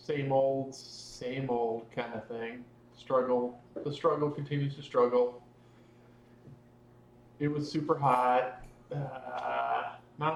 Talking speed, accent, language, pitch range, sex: 110 wpm, American, English, 120-160 Hz, male